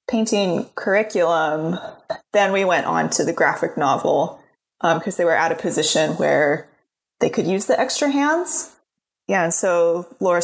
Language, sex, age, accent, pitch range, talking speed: English, female, 20-39, American, 165-220 Hz, 160 wpm